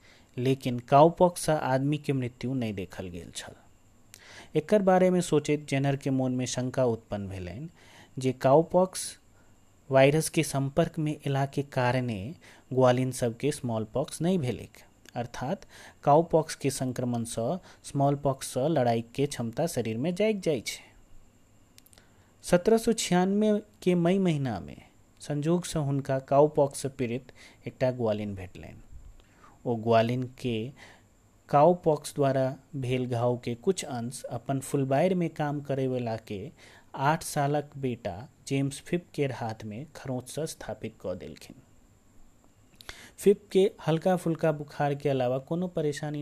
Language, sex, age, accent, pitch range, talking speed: Hindi, male, 30-49, native, 115-150 Hz, 125 wpm